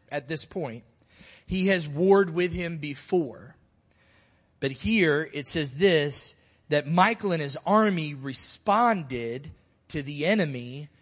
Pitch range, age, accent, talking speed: 135-195 Hz, 30-49, American, 125 wpm